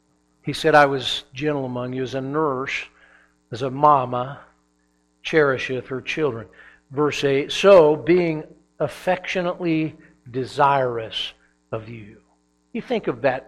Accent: American